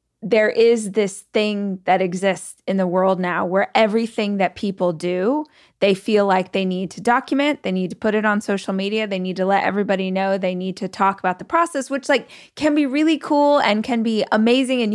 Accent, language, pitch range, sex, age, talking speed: American, English, 185-240 Hz, female, 20-39, 215 wpm